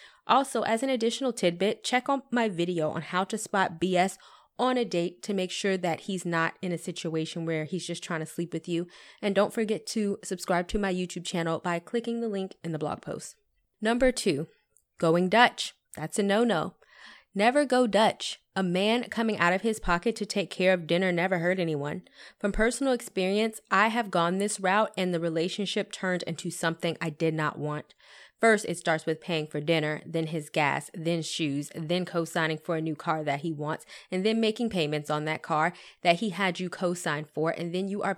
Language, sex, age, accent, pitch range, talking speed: English, female, 20-39, American, 165-215 Hz, 205 wpm